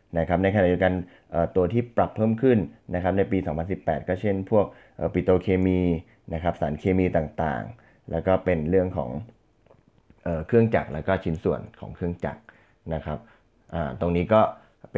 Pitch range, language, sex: 80-100 Hz, Thai, male